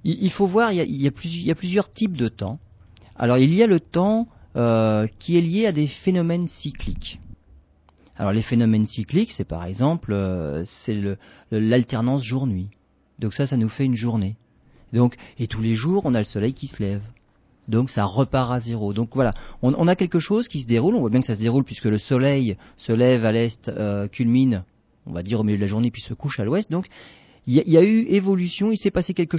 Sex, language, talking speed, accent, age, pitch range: male, French, 240 wpm, French, 40-59, 105-155 Hz